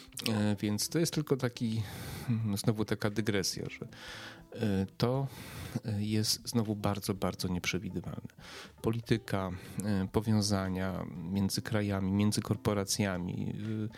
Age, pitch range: 30-49, 95-115 Hz